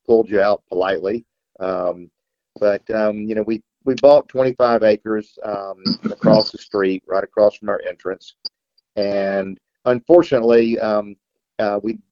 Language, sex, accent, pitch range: English, male, American, 105-120 Hz